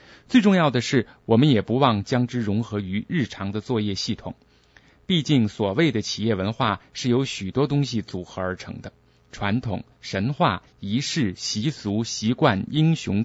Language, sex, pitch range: Chinese, male, 100-140 Hz